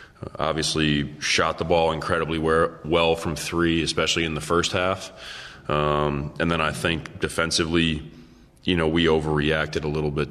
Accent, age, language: American, 30-49, English